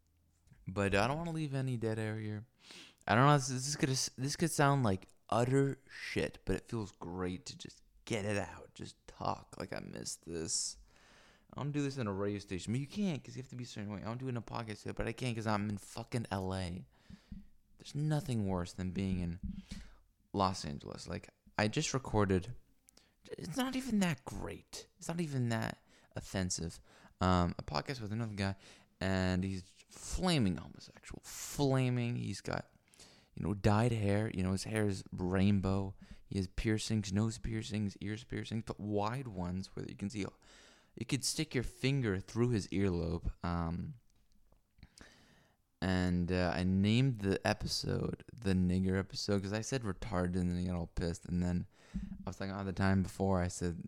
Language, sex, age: English, male, 20-39